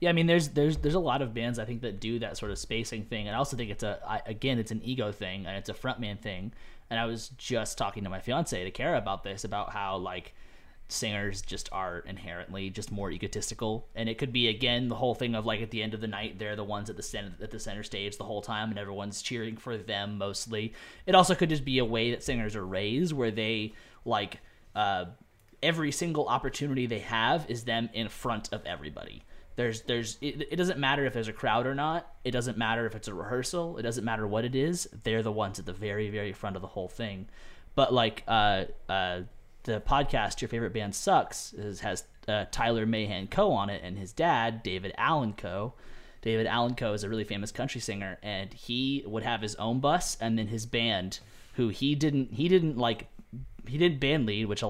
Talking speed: 235 wpm